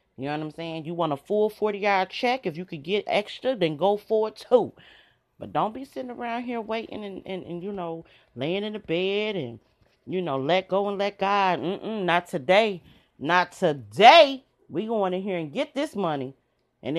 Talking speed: 210 wpm